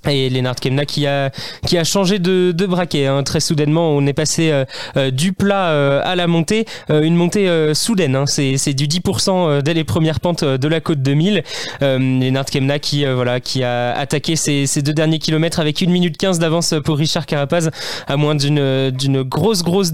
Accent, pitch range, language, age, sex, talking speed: French, 135-170 Hz, French, 20-39, male, 205 wpm